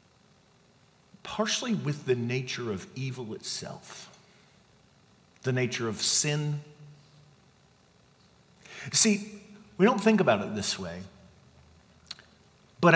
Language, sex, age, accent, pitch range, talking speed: English, male, 50-69, American, 120-195 Hz, 95 wpm